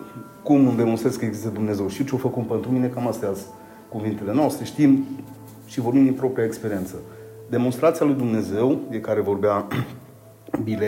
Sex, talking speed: male, 160 wpm